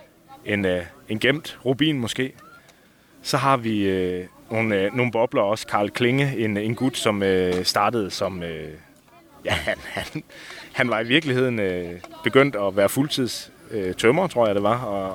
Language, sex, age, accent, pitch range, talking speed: Danish, male, 30-49, native, 100-130 Hz, 160 wpm